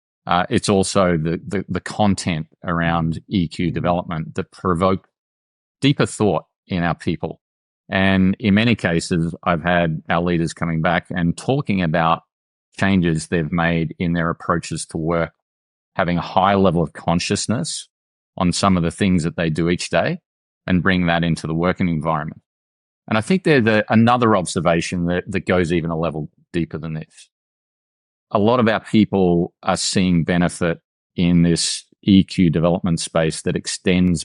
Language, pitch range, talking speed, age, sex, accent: English, 85-95 Hz, 160 wpm, 30-49, male, Australian